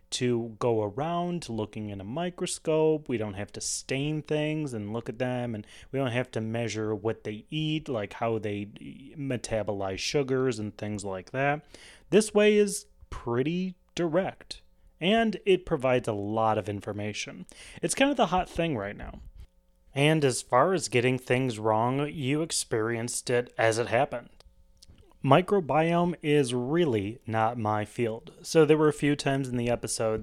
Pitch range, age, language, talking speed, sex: 110-165 Hz, 30-49, English, 165 wpm, male